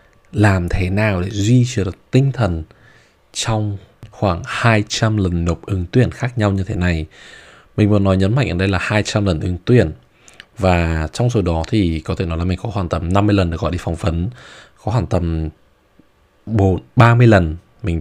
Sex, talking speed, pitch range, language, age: male, 195 wpm, 85-110 Hz, Vietnamese, 20-39